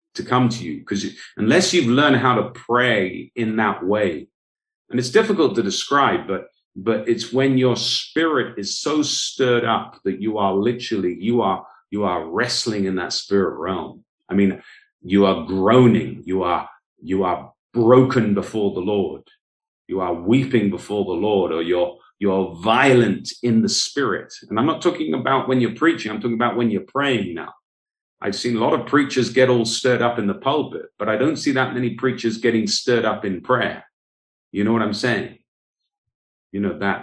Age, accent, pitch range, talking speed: 40-59, British, 100-125 Hz, 190 wpm